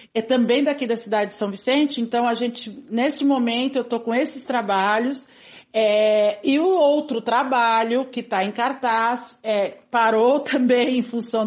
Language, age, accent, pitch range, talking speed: Portuguese, 50-69, Brazilian, 215-255 Hz, 165 wpm